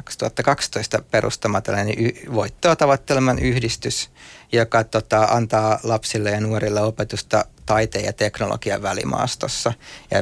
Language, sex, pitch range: Finnish, male, 110-125 Hz